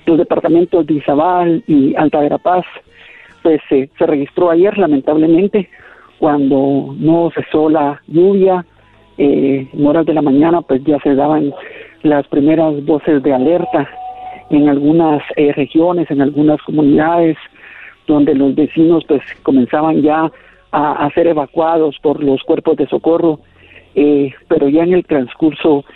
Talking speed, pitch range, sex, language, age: 140 wpm, 140-160 Hz, male, Spanish, 50-69